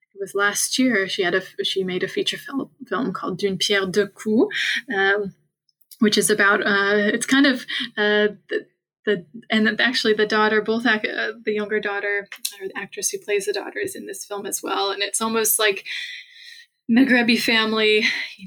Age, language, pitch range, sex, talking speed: 20-39, English, 195-255 Hz, female, 190 wpm